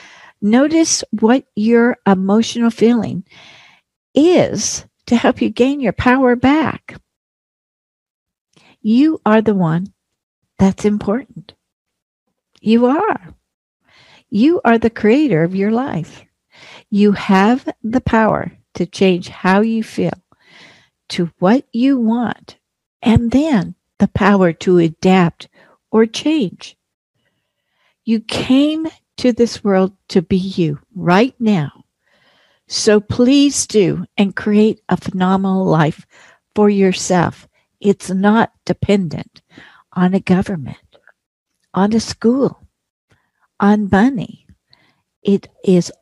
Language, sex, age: English, female, 60-79